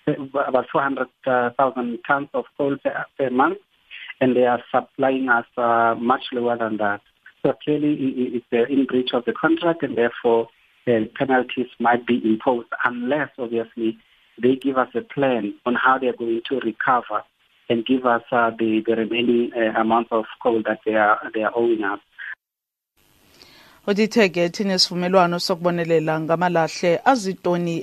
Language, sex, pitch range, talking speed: English, male, 140-180 Hz, 155 wpm